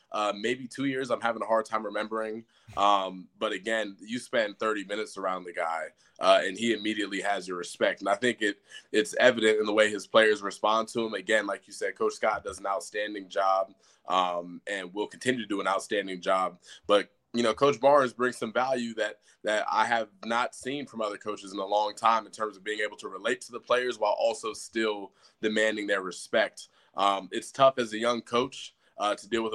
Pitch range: 100-115 Hz